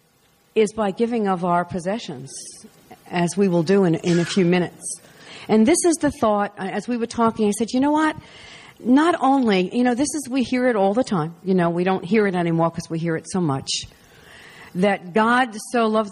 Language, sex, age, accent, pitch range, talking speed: English, female, 50-69, American, 180-240 Hz, 215 wpm